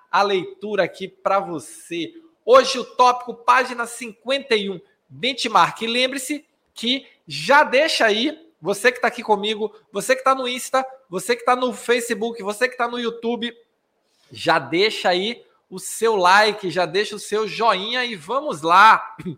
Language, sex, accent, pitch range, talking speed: Portuguese, male, Brazilian, 185-245 Hz, 160 wpm